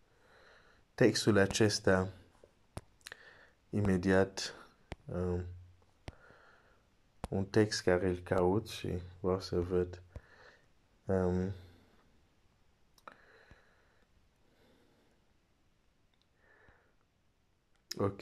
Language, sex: Romanian, male